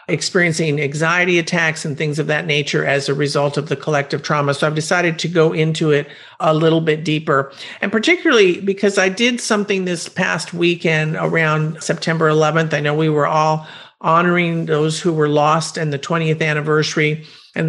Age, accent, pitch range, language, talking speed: 50-69, American, 150-180 Hz, English, 180 wpm